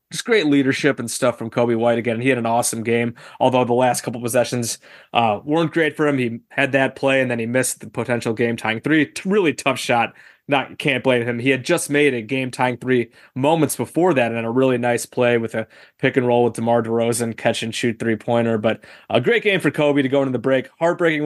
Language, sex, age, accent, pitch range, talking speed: English, male, 20-39, American, 120-155 Hz, 245 wpm